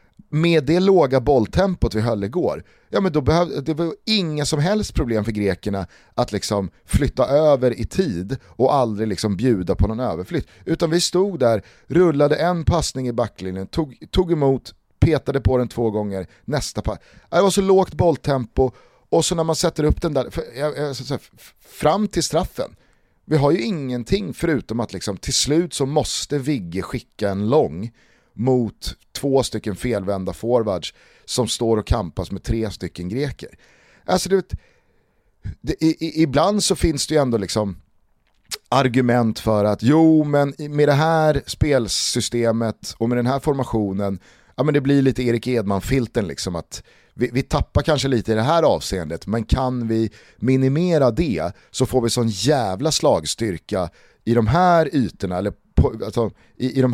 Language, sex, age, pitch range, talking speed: Swedish, male, 30-49, 110-155 Hz, 175 wpm